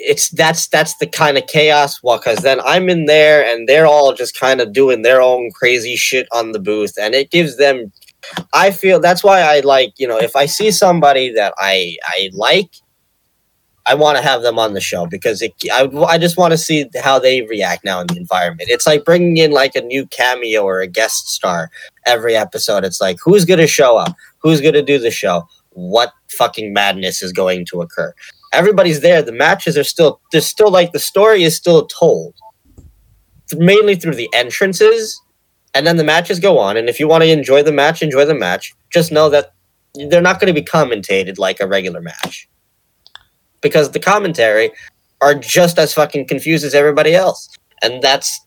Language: English